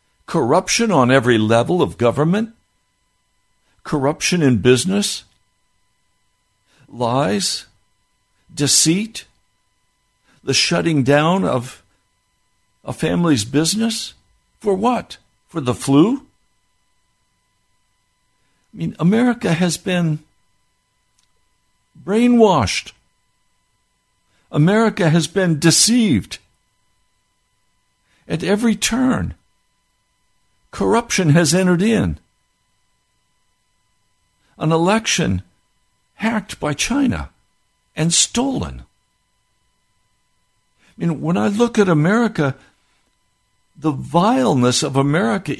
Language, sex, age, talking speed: English, male, 60-79, 75 wpm